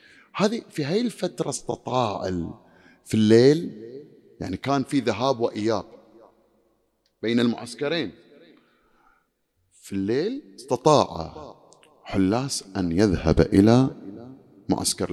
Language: English